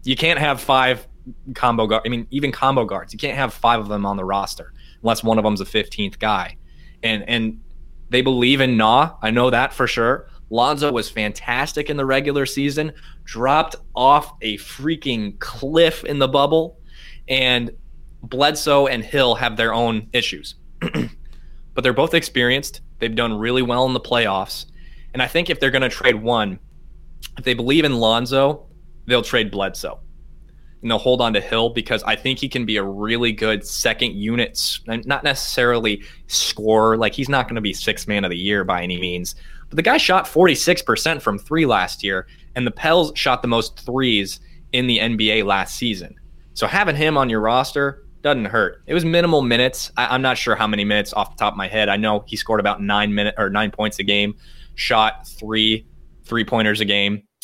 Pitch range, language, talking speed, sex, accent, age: 105-130 Hz, English, 195 wpm, male, American, 20-39